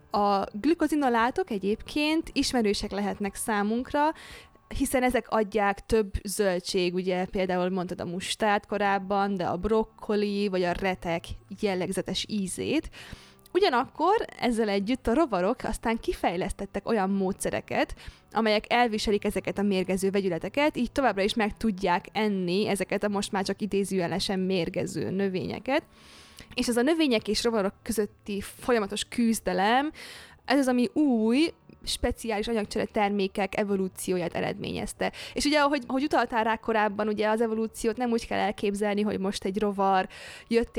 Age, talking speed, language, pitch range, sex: 20-39, 135 wpm, Hungarian, 195-235 Hz, female